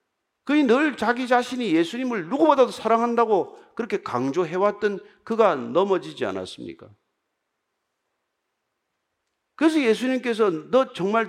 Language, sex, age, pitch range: Korean, male, 50-69, 195-280 Hz